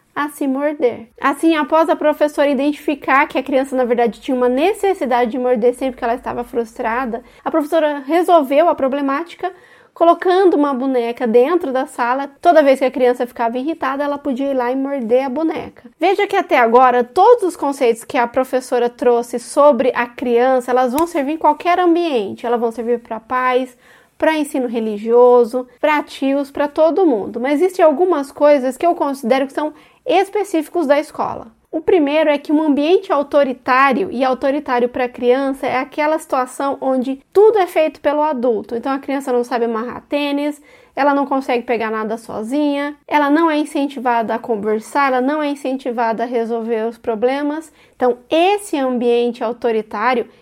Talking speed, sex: 175 wpm, female